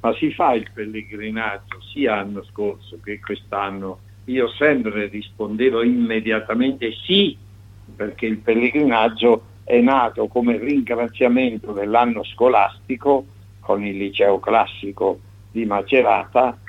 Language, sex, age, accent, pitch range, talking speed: Italian, male, 60-79, native, 100-115 Hz, 110 wpm